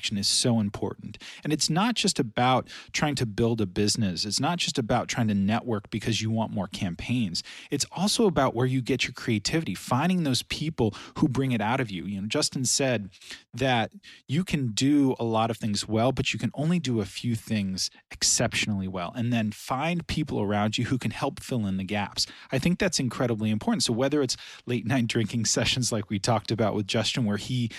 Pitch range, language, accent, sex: 105-130 Hz, English, American, male